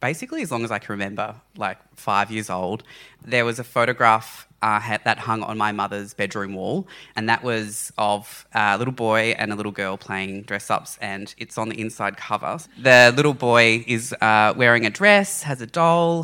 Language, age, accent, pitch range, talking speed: English, 20-39, Australian, 105-125 Hz, 195 wpm